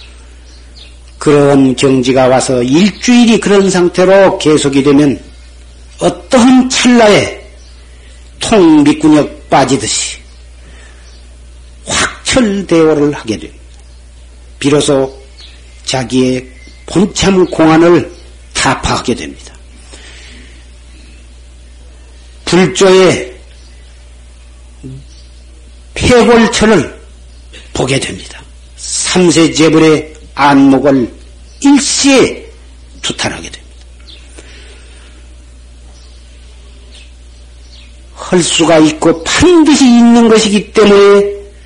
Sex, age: male, 50-69